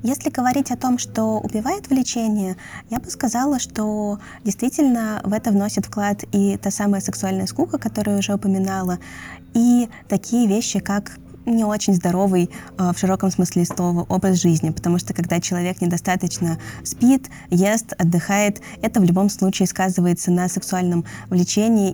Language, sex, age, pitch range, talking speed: Russian, female, 20-39, 180-235 Hz, 145 wpm